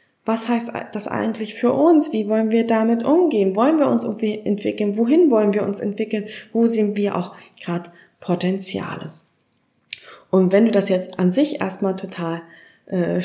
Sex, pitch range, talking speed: female, 190-235 Hz, 165 wpm